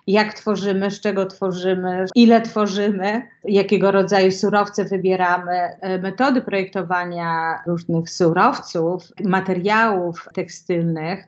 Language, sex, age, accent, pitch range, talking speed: Polish, female, 30-49, native, 185-210 Hz, 90 wpm